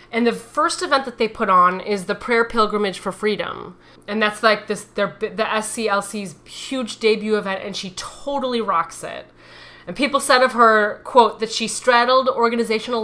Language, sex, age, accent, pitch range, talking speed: English, female, 30-49, American, 205-255 Hz, 180 wpm